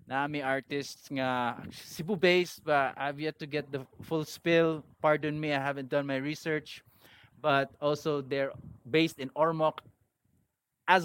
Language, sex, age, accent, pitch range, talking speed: English, male, 20-39, Filipino, 135-165 Hz, 145 wpm